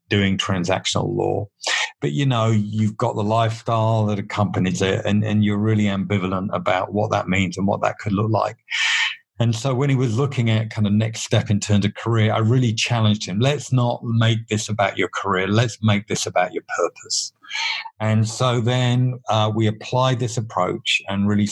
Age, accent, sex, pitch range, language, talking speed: 50-69, British, male, 100-115 Hz, English, 195 wpm